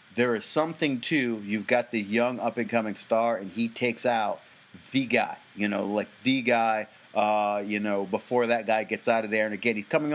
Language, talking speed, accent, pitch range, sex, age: English, 205 wpm, American, 110-130 Hz, male, 30-49